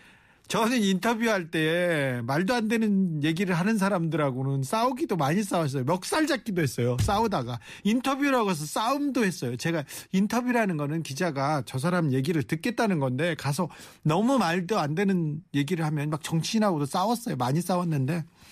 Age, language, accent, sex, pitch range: 40-59, Korean, native, male, 145-195 Hz